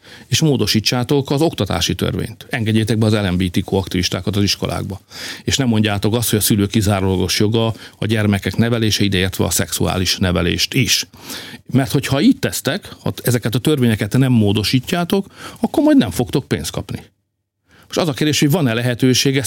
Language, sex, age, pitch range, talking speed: Hungarian, male, 50-69, 105-130 Hz, 155 wpm